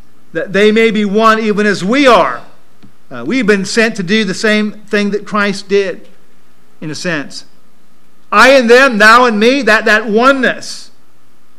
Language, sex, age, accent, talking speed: English, male, 50-69, American, 170 wpm